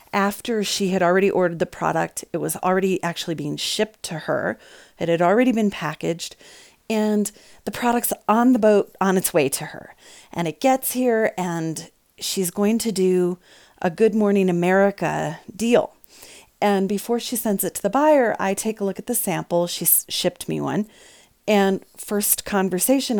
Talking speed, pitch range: 175 wpm, 180-215 Hz